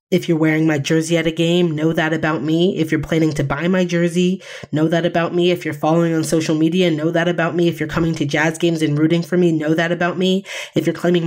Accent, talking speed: American, 265 wpm